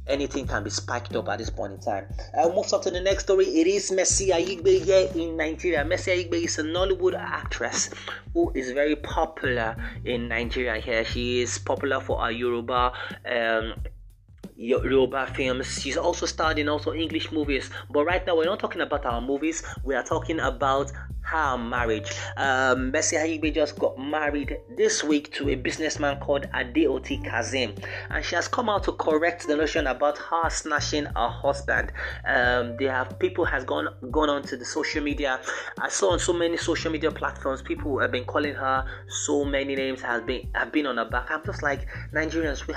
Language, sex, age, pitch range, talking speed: English, male, 30-49, 120-160 Hz, 190 wpm